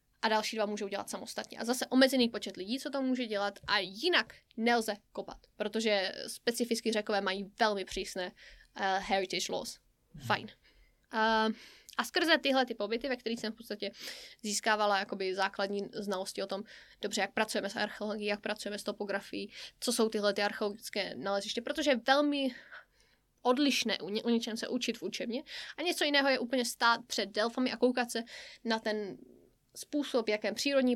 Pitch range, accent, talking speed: 210-280 Hz, native, 175 wpm